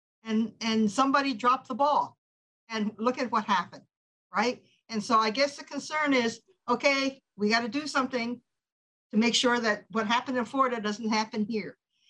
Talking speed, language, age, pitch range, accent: 175 wpm, English, 50-69, 210-260 Hz, American